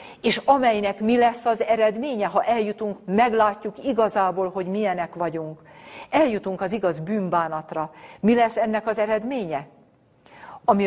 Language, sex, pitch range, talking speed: Hungarian, female, 160-210 Hz, 125 wpm